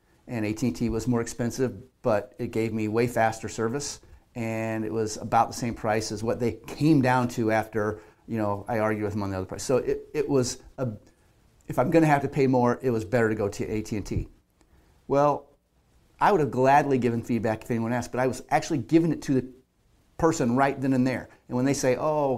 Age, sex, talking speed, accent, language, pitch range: 30-49, male, 225 wpm, American, English, 110-130 Hz